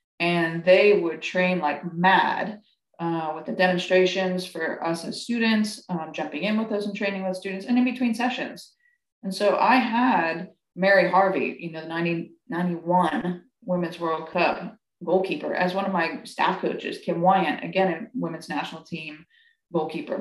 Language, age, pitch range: English, 20-39, 170-205 Hz